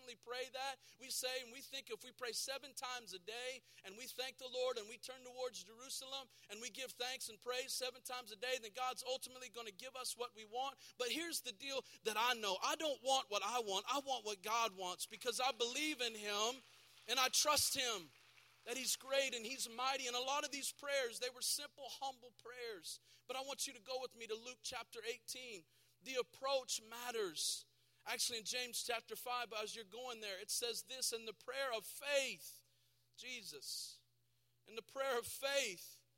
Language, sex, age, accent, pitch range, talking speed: English, male, 40-59, American, 220-265 Hz, 210 wpm